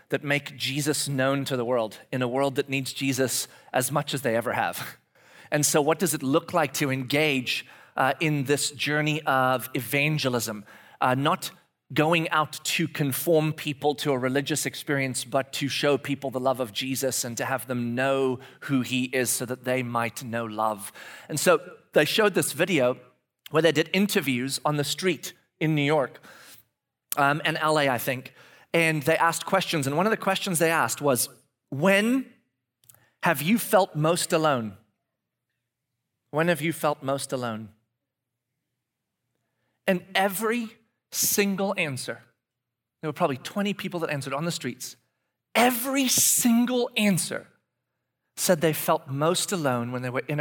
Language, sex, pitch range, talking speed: English, male, 130-160 Hz, 165 wpm